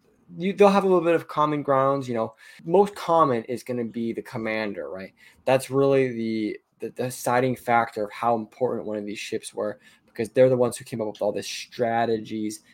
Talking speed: 210 wpm